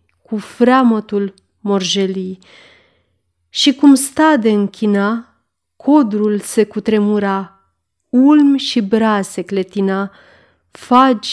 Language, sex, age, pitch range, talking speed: Romanian, female, 30-49, 195-245 Hz, 90 wpm